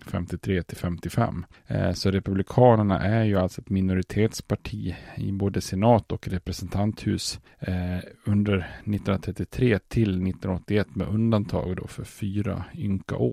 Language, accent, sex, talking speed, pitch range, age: Swedish, Norwegian, male, 115 wpm, 90-105 Hz, 30-49